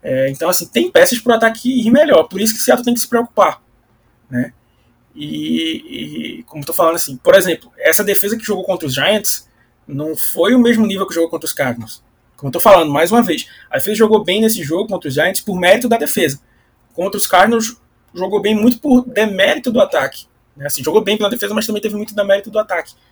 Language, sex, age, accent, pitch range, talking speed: Portuguese, male, 20-39, Brazilian, 160-220 Hz, 230 wpm